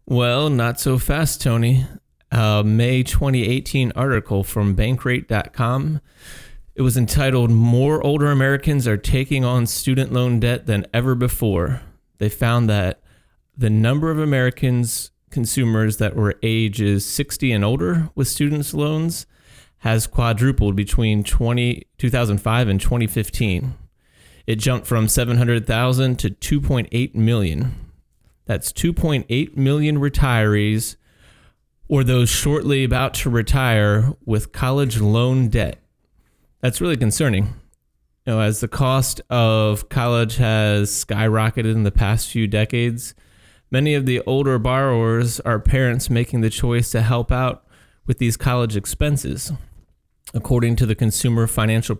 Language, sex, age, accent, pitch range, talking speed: English, male, 30-49, American, 110-130 Hz, 125 wpm